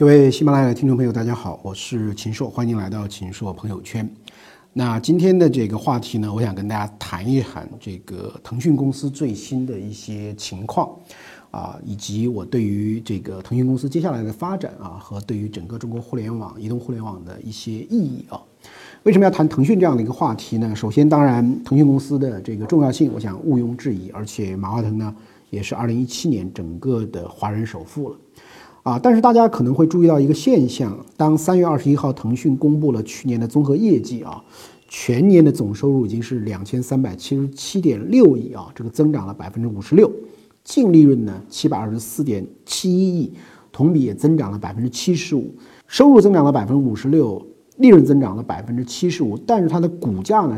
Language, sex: Chinese, male